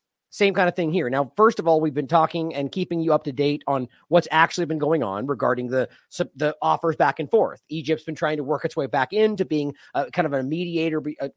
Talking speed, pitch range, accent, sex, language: 245 wpm, 150-205 Hz, American, male, English